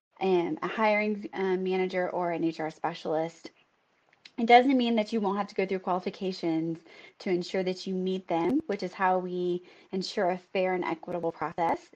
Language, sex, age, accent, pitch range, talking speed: English, female, 20-39, American, 175-200 Hz, 180 wpm